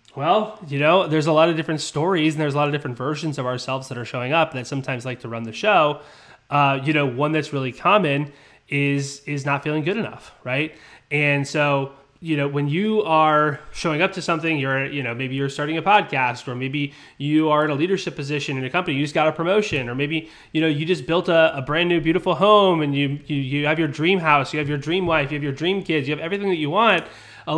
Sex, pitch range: male, 135-170 Hz